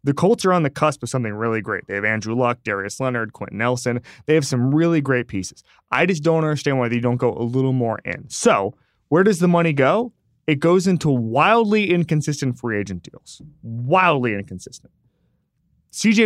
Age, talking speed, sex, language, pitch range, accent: 20-39, 195 wpm, male, English, 110-155 Hz, American